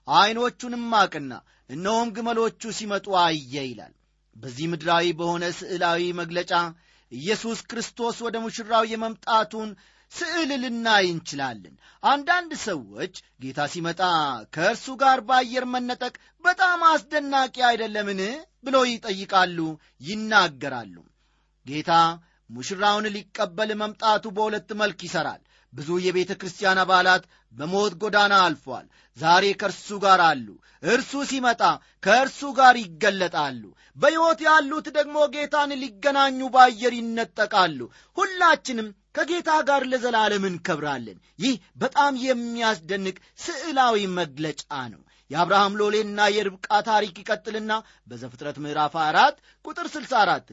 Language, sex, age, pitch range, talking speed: Amharic, male, 40-59, 175-250 Hz, 100 wpm